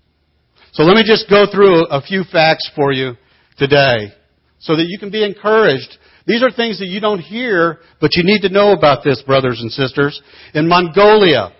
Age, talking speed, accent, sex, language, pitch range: 60-79, 190 wpm, American, male, English, 140-190 Hz